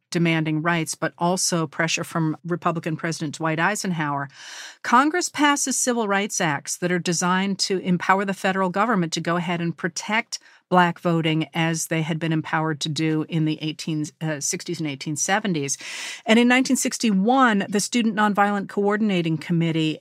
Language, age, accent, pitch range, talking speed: English, 50-69, American, 170-230 Hz, 150 wpm